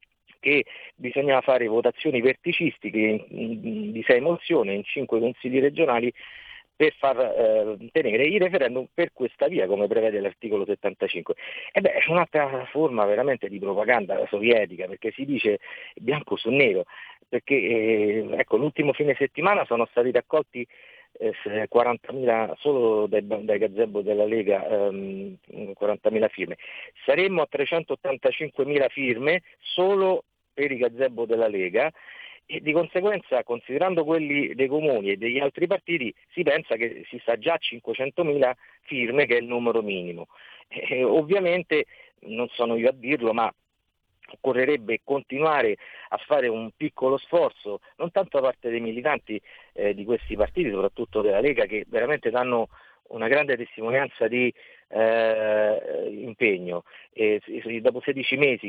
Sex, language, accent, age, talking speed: male, Italian, native, 50-69, 140 wpm